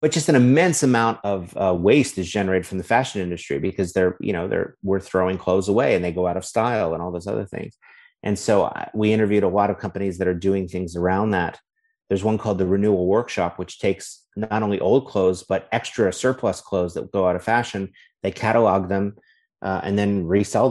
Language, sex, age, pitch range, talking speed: English, male, 30-49, 95-110 Hz, 225 wpm